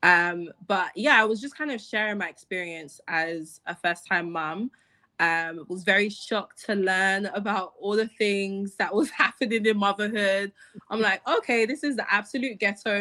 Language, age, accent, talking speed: English, 20-39, British, 180 wpm